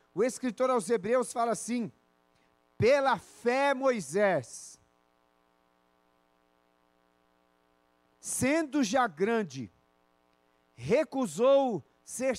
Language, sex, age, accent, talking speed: Portuguese, male, 40-59, Brazilian, 70 wpm